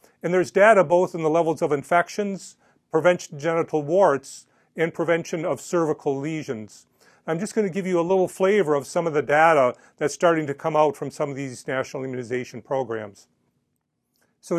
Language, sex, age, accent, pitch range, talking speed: English, male, 40-59, American, 135-170 Hz, 185 wpm